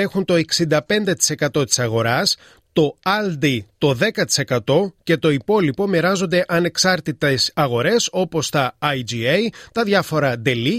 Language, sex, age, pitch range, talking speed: Greek, male, 30-49, 145-195 Hz, 115 wpm